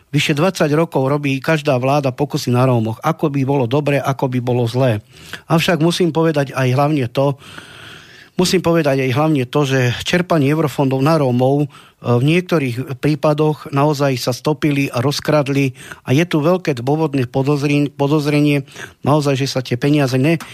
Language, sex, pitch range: Slovak, male, 130-155 Hz